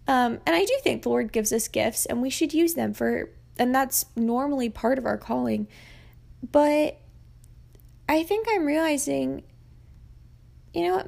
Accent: American